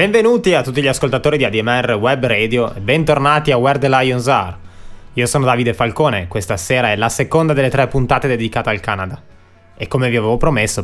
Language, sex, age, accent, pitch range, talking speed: Italian, male, 20-39, native, 105-130 Hz, 200 wpm